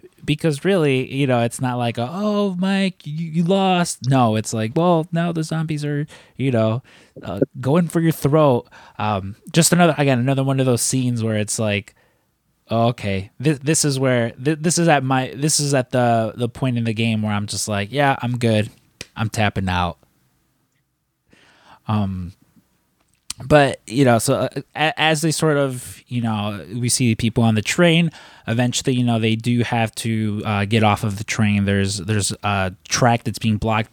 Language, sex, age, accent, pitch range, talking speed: English, male, 20-39, American, 105-140 Hz, 190 wpm